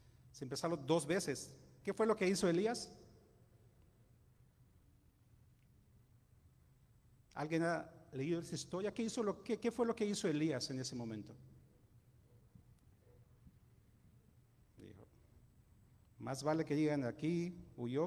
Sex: male